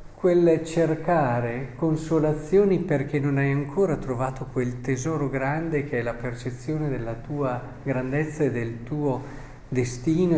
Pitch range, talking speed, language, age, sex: 120-155 Hz, 125 wpm, Italian, 50-69, male